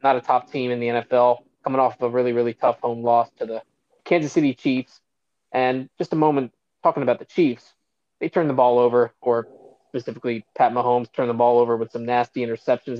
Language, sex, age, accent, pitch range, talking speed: English, male, 20-39, American, 120-145 Hz, 210 wpm